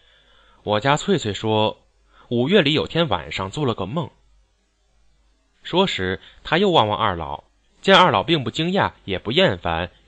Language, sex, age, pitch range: Chinese, male, 20-39, 85-135 Hz